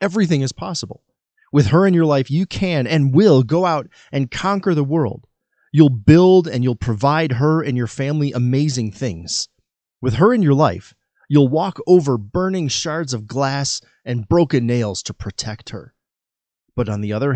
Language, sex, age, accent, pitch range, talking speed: English, male, 30-49, American, 125-175 Hz, 175 wpm